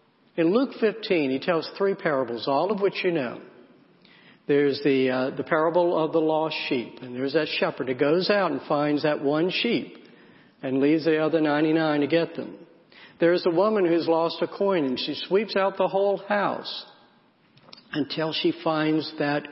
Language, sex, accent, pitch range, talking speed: English, male, American, 150-185 Hz, 180 wpm